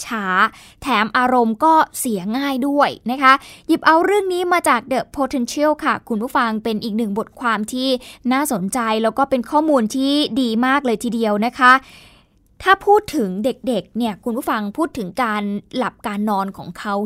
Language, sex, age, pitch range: Thai, female, 20-39, 220-275 Hz